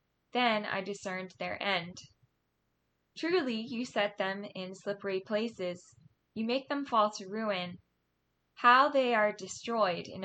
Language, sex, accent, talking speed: English, female, American, 135 wpm